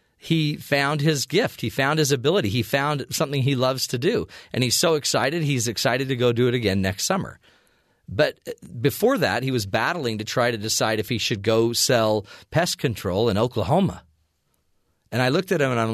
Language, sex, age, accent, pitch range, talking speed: English, male, 40-59, American, 110-155 Hz, 205 wpm